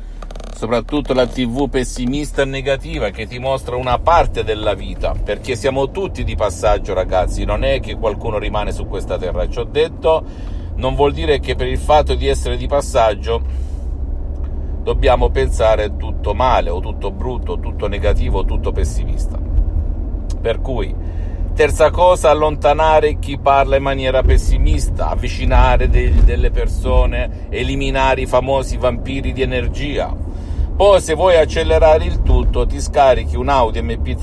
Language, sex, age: Italian, male, 50-69